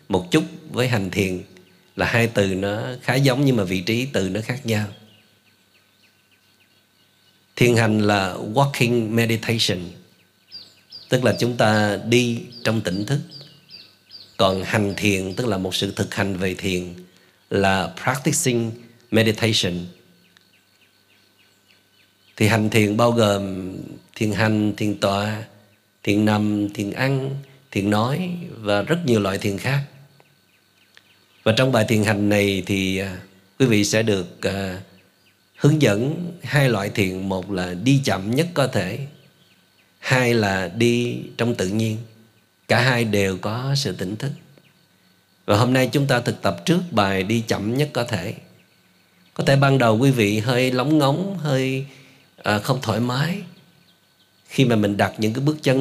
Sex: male